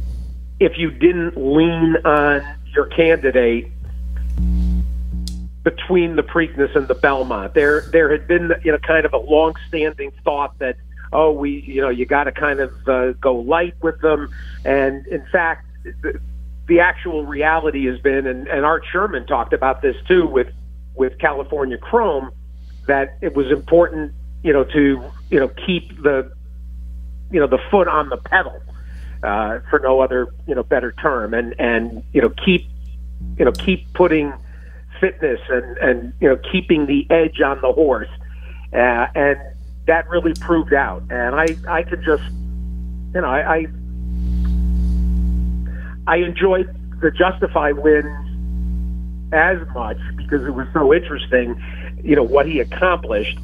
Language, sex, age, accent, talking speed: English, male, 50-69, American, 155 wpm